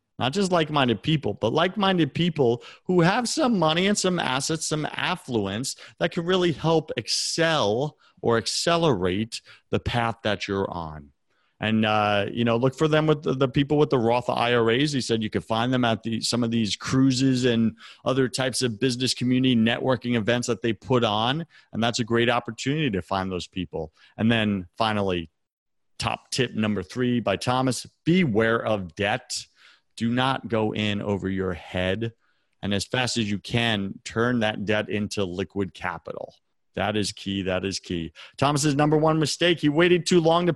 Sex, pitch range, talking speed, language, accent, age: male, 110-150 Hz, 180 wpm, English, American, 40-59